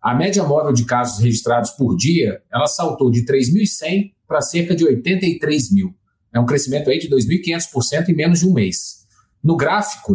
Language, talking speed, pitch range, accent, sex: Portuguese, 170 wpm, 125-195 Hz, Brazilian, male